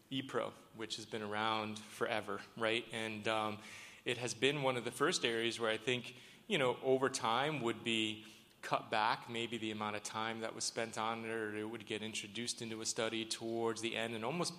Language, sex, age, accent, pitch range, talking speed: English, male, 30-49, American, 110-120 Hz, 210 wpm